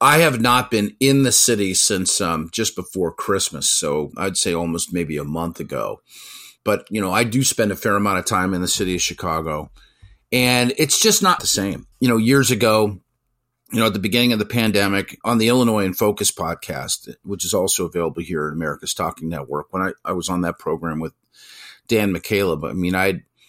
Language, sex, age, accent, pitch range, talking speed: English, male, 40-59, American, 85-115 Hz, 210 wpm